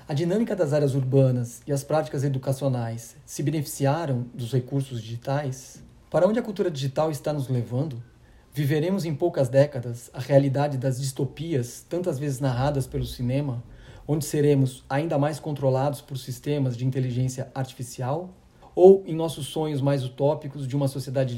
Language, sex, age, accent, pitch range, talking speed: Portuguese, male, 40-59, Brazilian, 130-145 Hz, 150 wpm